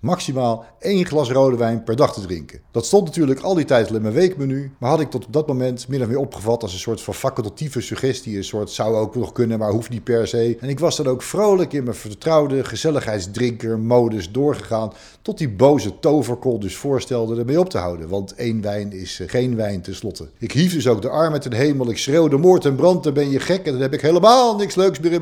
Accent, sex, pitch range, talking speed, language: Dutch, male, 110-150 Hz, 240 wpm, Dutch